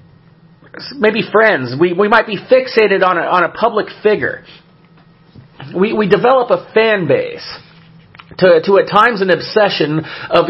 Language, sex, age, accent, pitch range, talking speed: English, male, 40-59, American, 165-205 Hz, 150 wpm